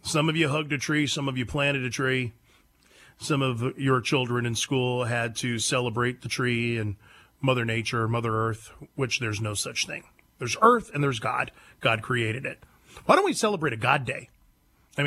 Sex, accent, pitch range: male, American, 120-150 Hz